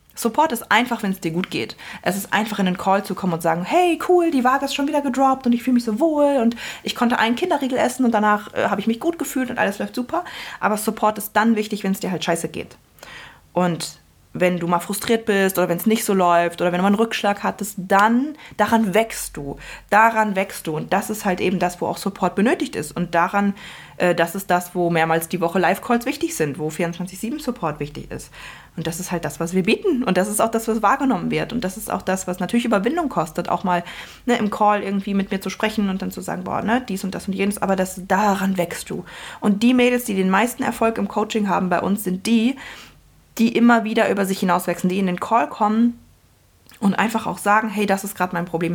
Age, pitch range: 20-39, 180-225 Hz